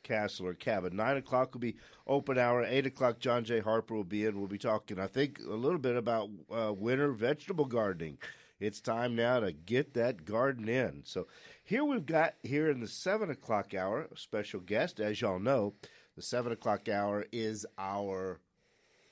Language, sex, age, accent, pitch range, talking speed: English, male, 50-69, American, 115-155 Hz, 190 wpm